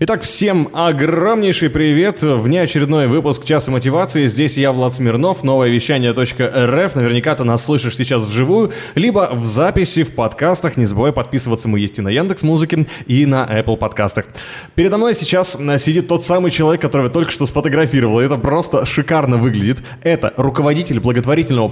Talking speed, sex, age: 165 wpm, male, 20-39